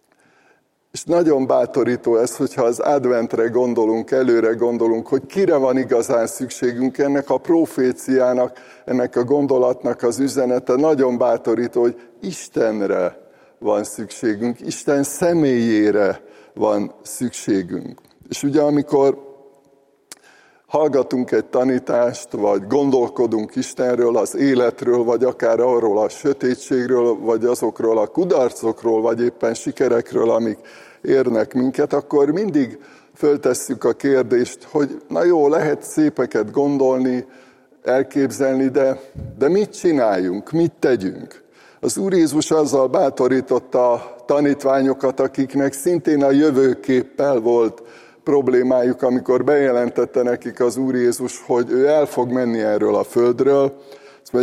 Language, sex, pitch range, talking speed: Hungarian, male, 120-140 Hz, 115 wpm